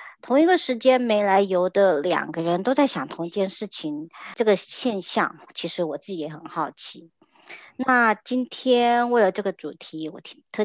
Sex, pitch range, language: male, 170-220 Hz, Chinese